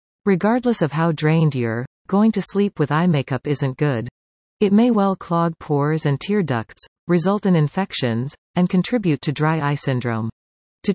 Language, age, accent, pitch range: English, 40-59, American, 140-185 Hz